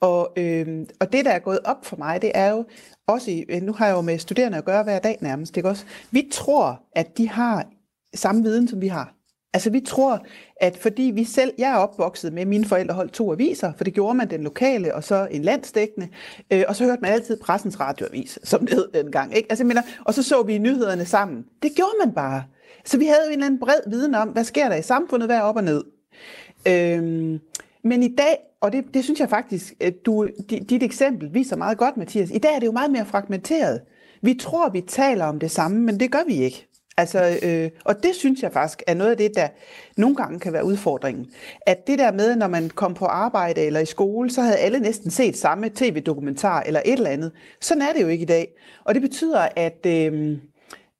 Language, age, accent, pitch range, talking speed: Danish, 30-49, native, 180-255 Hz, 235 wpm